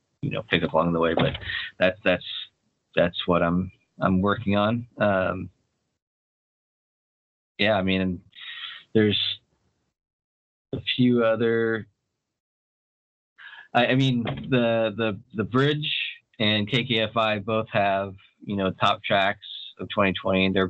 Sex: male